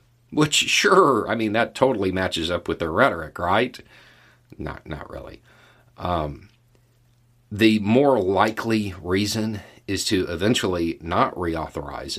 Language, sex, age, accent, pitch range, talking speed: English, male, 50-69, American, 85-120 Hz, 125 wpm